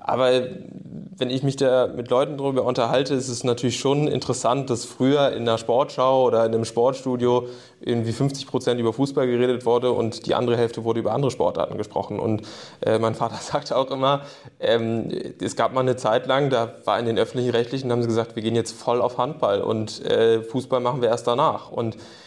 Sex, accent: male, German